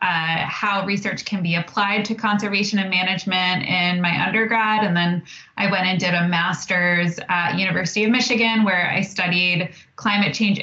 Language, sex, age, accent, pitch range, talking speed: English, female, 20-39, American, 180-205 Hz, 170 wpm